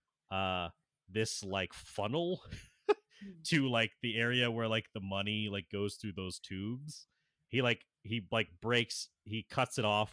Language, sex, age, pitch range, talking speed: English, male, 30-49, 95-125 Hz, 155 wpm